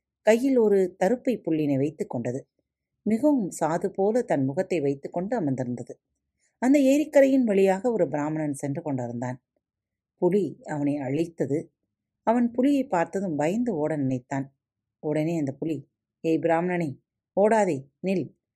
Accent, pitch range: native, 140-215 Hz